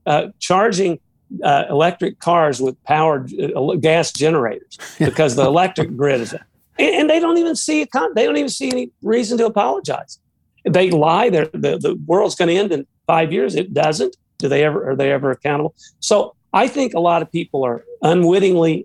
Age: 50-69